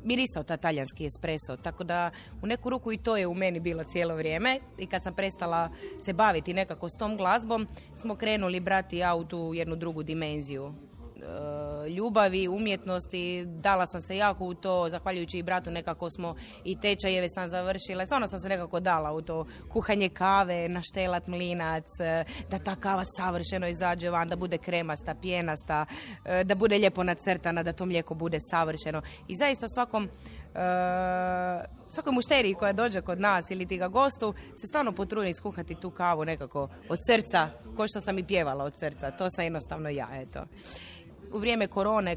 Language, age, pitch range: Croatian, 20-39, 160-195 Hz